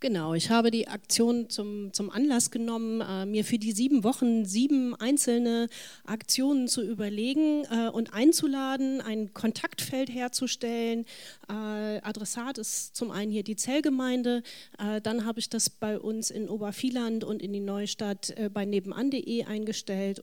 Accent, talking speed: German, 150 wpm